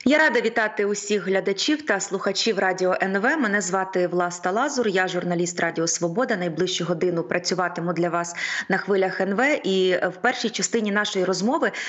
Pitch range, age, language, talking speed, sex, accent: 185-220 Hz, 20-39, Ukrainian, 155 wpm, female, native